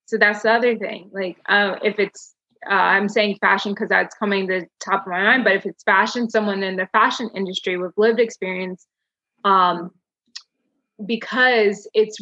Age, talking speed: 20-39, 180 wpm